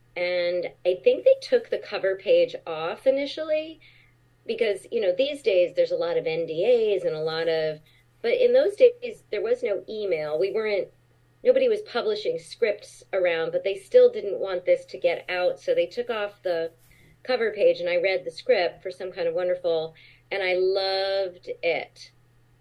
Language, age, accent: English, 40-59, American